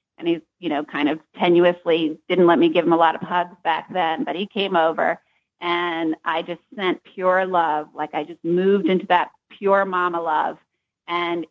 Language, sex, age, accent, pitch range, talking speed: English, female, 40-59, American, 170-220 Hz, 200 wpm